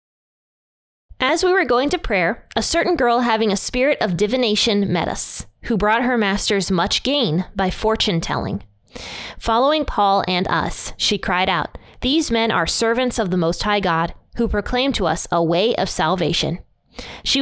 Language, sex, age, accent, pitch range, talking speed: English, female, 20-39, American, 185-240 Hz, 170 wpm